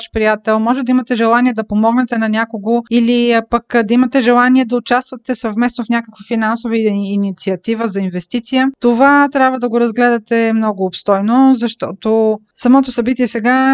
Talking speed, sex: 150 wpm, female